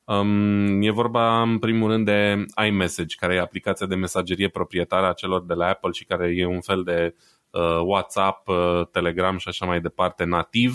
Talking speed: 190 wpm